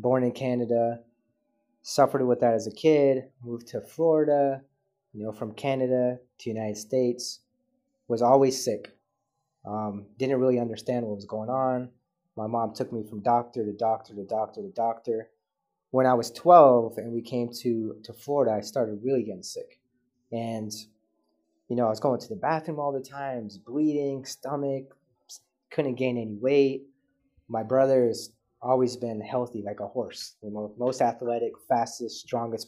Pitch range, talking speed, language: 115-135 Hz, 160 wpm, English